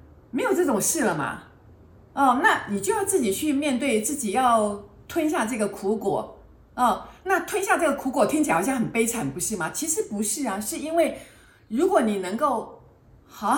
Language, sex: Chinese, female